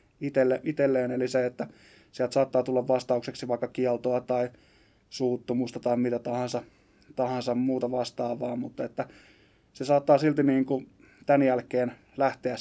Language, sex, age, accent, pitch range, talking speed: Finnish, male, 20-39, native, 125-135 Hz, 135 wpm